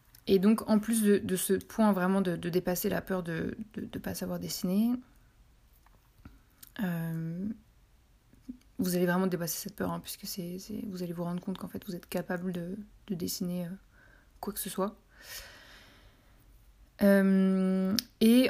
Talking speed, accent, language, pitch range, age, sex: 155 wpm, French, French, 180-210 Hz, 20-39, female